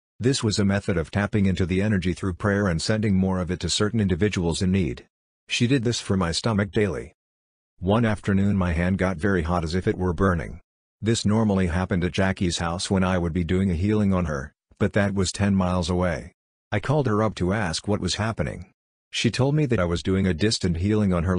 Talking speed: 230 wpm